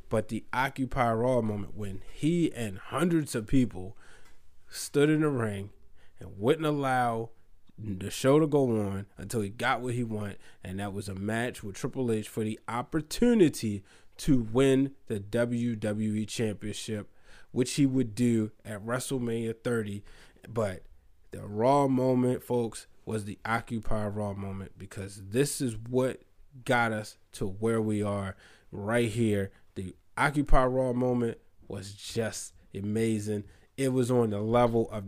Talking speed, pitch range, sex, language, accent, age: 145 wpm, 100-125 Hz, male, English, American, 20-39